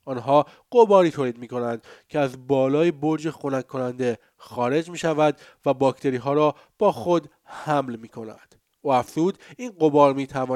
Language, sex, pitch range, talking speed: Persian, male, 130-160 Hz, 160 wpm